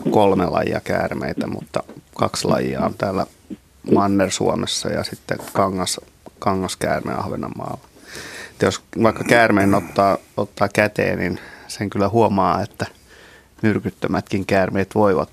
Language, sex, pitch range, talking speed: Finnish, male, 95-105 Hz, 115 wpm